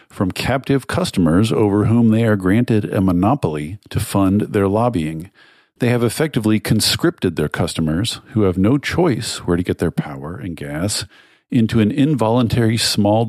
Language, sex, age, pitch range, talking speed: English, male, 50-69, 90-120 Hz, 160 wpm